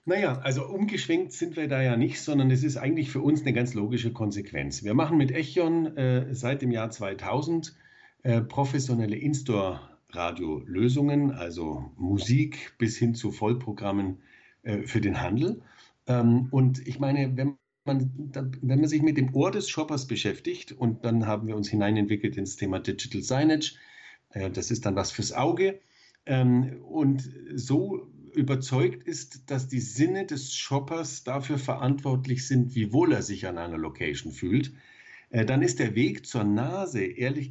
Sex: male